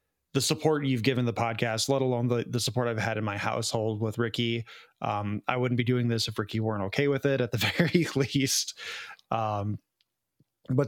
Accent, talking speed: American, 200 wpm